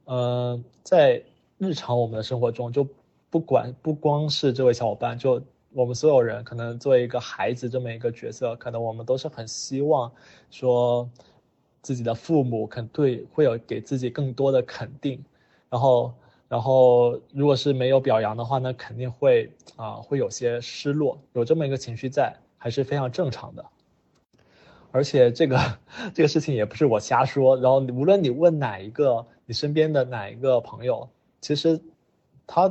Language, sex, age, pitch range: Chinese, male, 20-39, 120-140 Hz